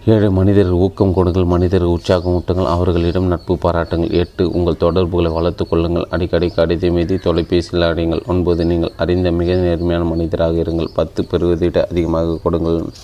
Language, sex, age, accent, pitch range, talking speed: Tamil, male, 30-49, native, 85-90 Hz, 140 wpm